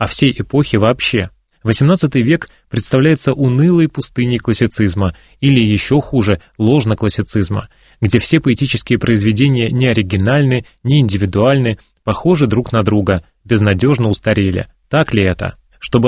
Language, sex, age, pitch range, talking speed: Russian, male, 20-39, 105-130 Hz, 120 wpm